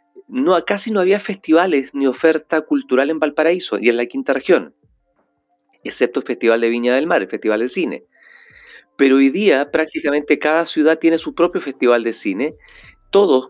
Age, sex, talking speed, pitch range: 40-59, male, 175 wpm, 125-165 Hz